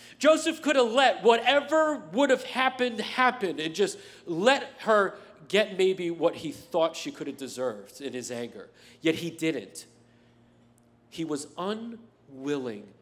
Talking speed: 145 wpm